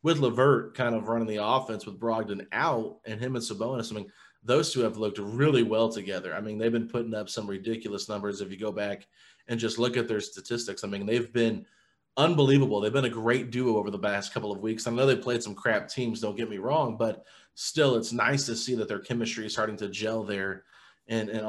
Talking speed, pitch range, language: 235 wpm, 105-125 Hz, English